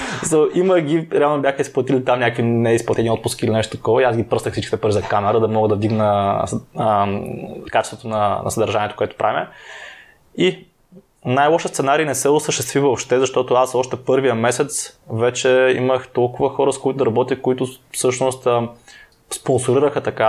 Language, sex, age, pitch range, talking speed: Bulgarian, male, 20-39, 115-135 Hz, 165 wpm